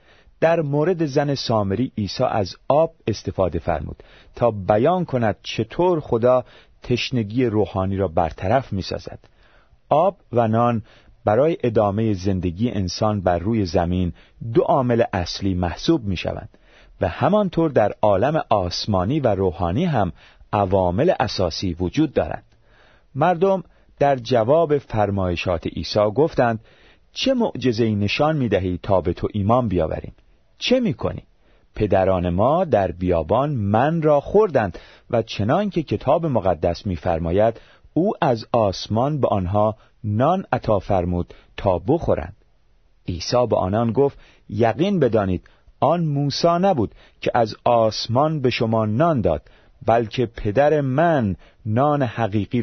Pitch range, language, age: 95-130 Hz, Persian, 40-59